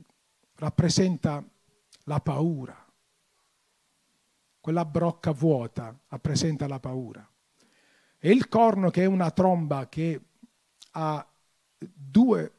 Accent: native